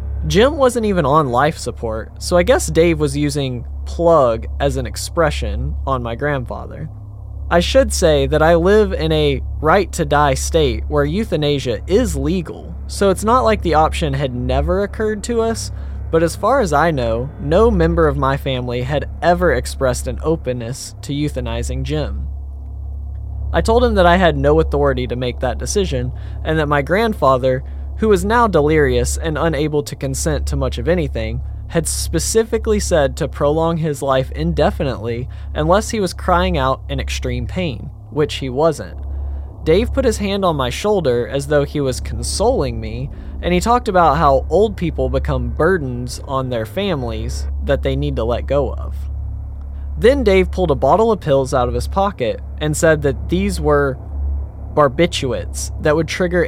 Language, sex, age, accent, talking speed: English, male, 20-39, American, 175 wpm